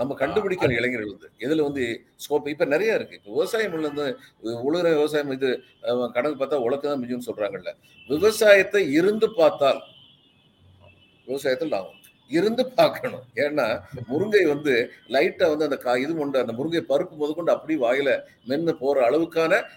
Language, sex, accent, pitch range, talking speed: Tamil, male, native, 145-200 Hz, 60 wpm